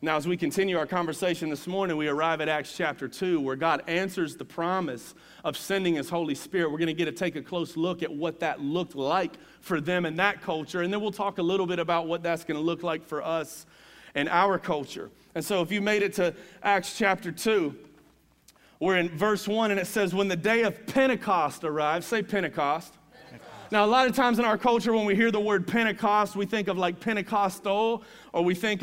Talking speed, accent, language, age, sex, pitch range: 225 wpm, American, English, 30-49, male, 175-220 Hz